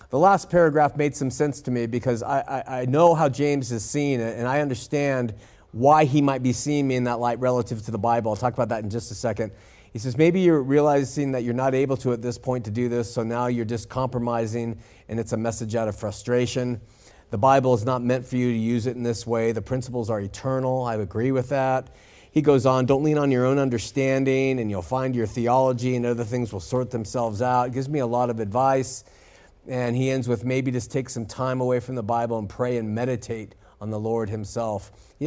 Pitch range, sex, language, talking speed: 115-140 Hz, male, English, 240 wpm